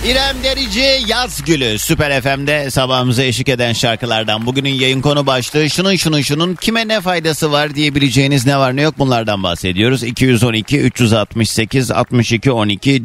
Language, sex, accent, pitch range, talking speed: Turkish, male, native, 100-130 Hz, 130 wpm